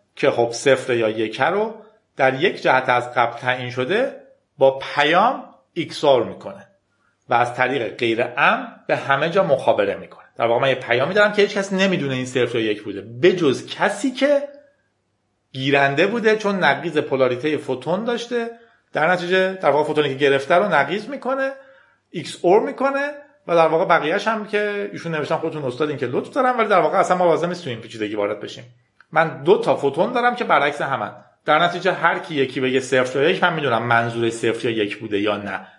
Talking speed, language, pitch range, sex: 190 wpm, Persian, 130-205 Hz, male